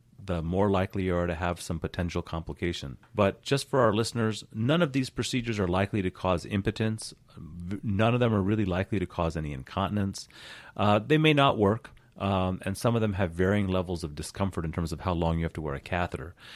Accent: American